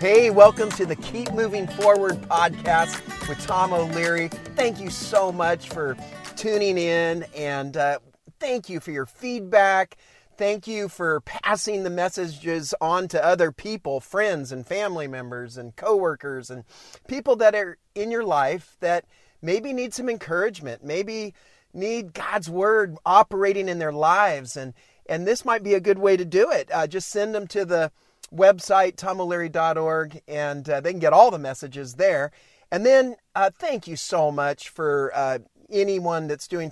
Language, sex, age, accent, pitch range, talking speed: English, male, 40-59, American, 150-205 Hz, 165 wpm